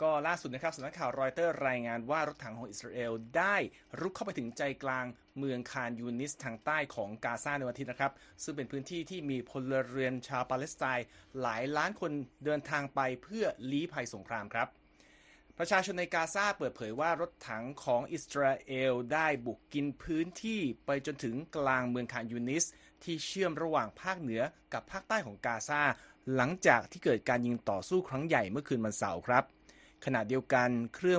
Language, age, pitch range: Thai, 30-49, 120-155 Hz